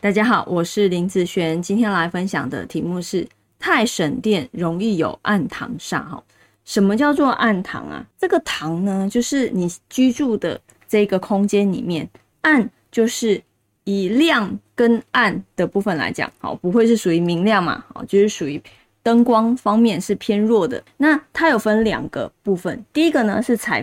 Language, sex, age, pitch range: Chinese, female, 20-39, 185-240 Hz